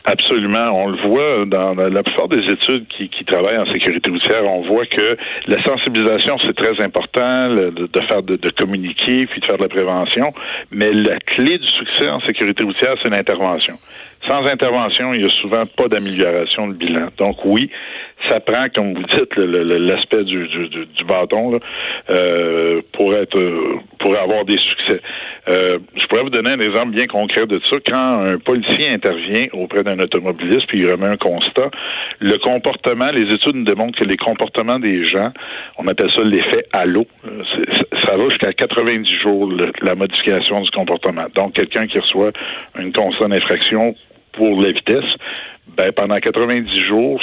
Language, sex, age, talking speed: French, male, 60-79, 175 wpm